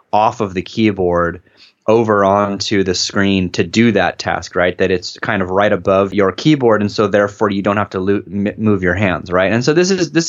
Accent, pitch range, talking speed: American, 95-110 Hz, 215 wpm